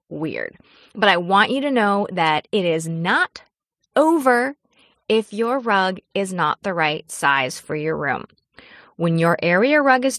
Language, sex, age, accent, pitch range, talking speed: English, female, 20-39, American, 170-230 Hz, 165 wpm